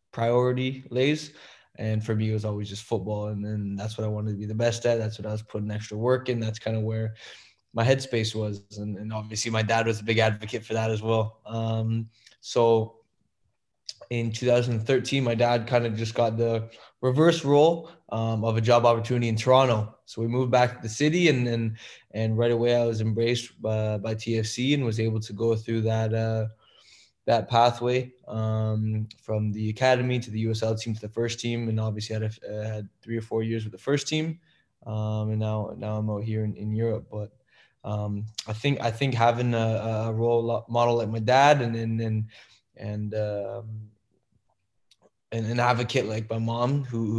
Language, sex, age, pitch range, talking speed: English, male, 20-39, 110-120 Hz, 200 wpm